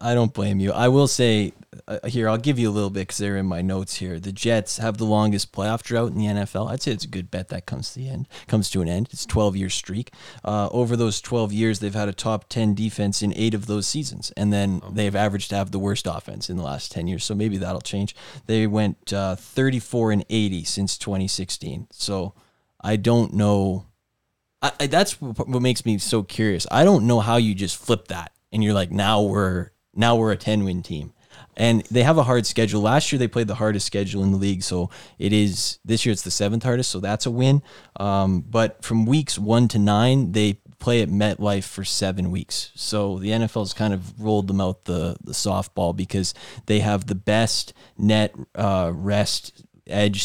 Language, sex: English, male